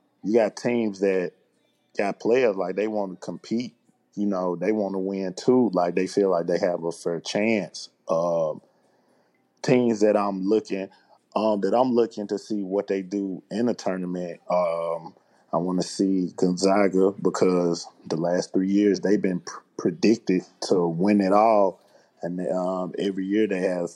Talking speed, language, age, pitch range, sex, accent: 170 wpm, English, 20-39, 90-105 Hz, male, American